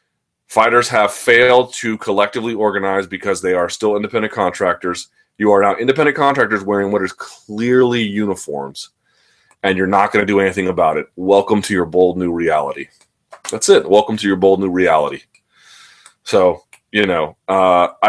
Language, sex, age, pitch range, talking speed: English, male, 30-49, 100-125 Hz, 165 wpm